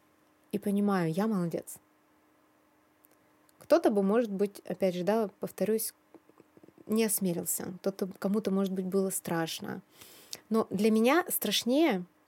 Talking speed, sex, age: 115 wpm, female, 20-39